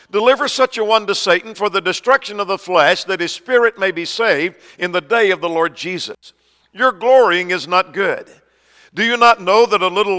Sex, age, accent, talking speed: male, 50-69, American, 220 wpm